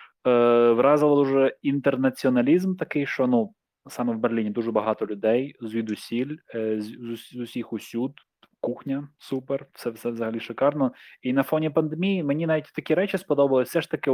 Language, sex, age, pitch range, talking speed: Ukrainian, male, 20-39, 115-150 Hz, 155 wpm